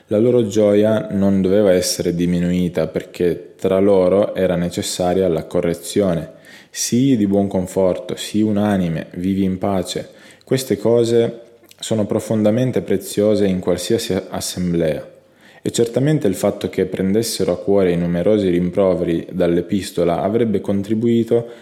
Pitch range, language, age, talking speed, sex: 90-110 Hz, Italian, 20-39, 125 wpm, male